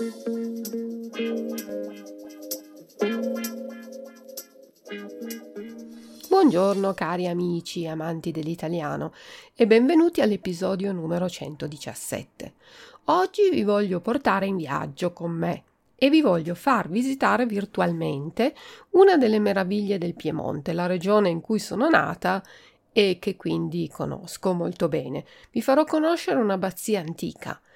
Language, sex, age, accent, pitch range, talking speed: Italian, female, 40-59, native, 170-250 Hz, 100 wpm